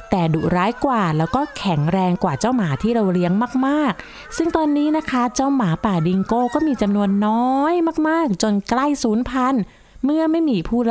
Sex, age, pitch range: female, 20-39, 185-260 Hz